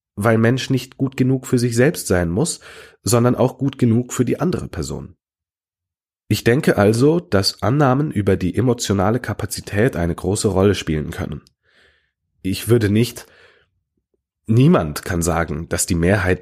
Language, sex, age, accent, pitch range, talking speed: German, male, 30-49, German, 90-120 Hz, 150 wpm